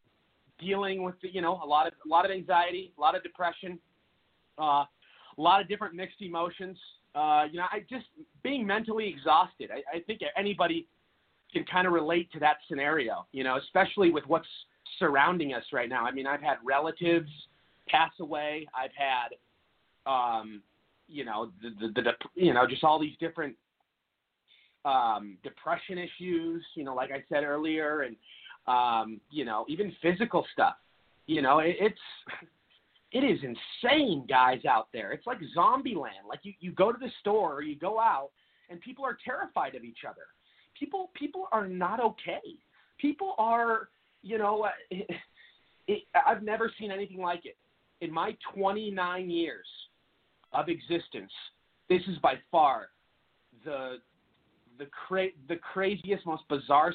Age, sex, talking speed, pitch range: 30-49, male, 160 wpm, 150-205 Hz